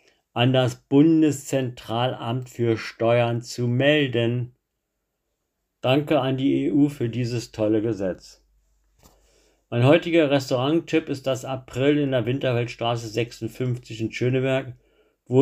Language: German